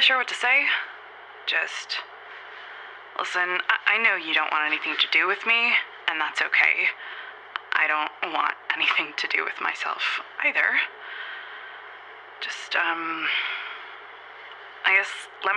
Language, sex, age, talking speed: English, female, 20-39, 130 wpm